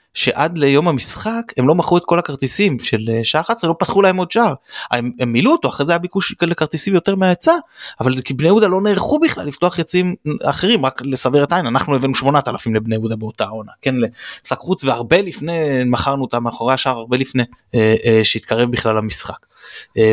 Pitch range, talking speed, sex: 120-170 Hz, 195 wpm, male